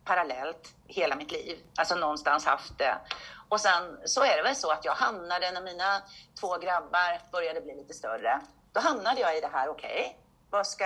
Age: 40-59